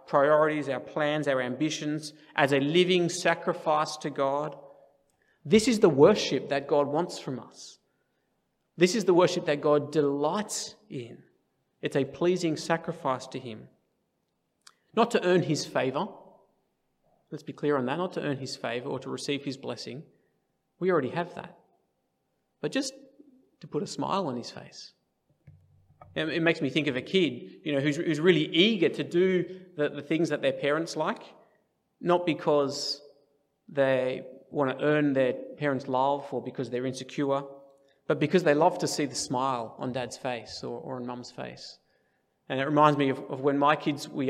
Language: English